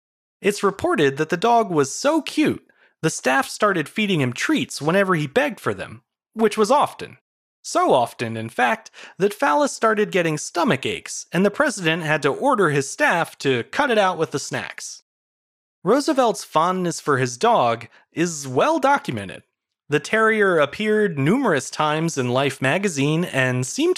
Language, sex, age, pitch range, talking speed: English, male, 30-49, 145-225 Hz, 160 wpm